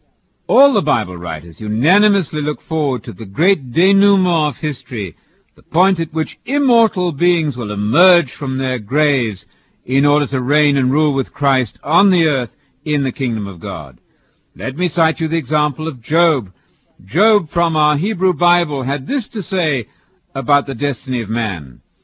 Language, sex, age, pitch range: English, male, 60-79, 130-180 Hz